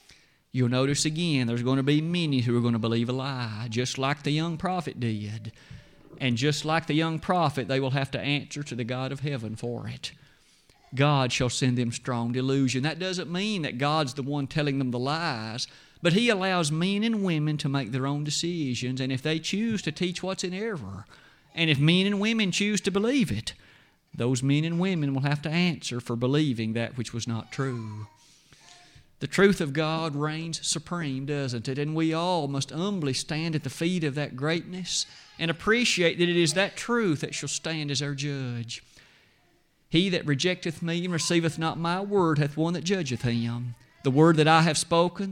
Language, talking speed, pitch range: English, 205 wpm, 130-170 Hz